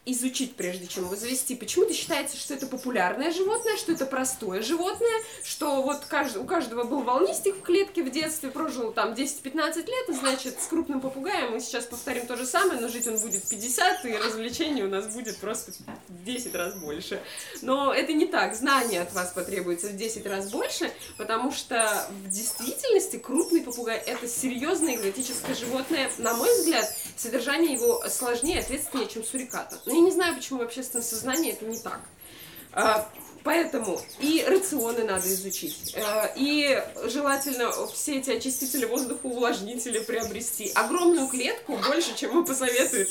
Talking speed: 160 wpm